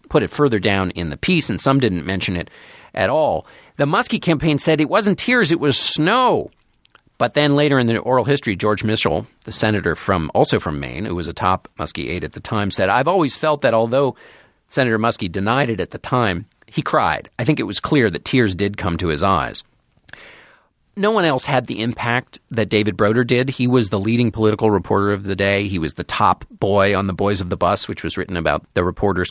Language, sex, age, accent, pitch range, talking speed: English, male, 40-59, American, 100-140 Hz, 225 wpm